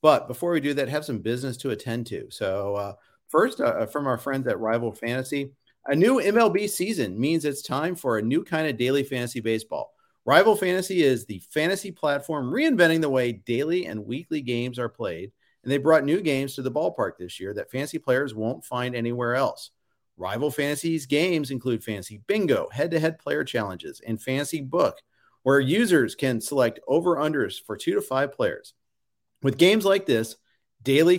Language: English